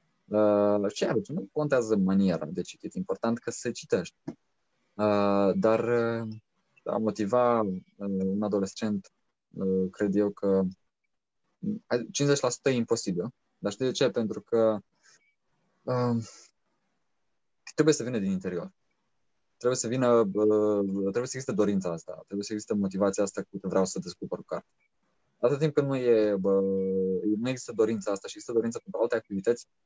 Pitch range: 100-120 Hz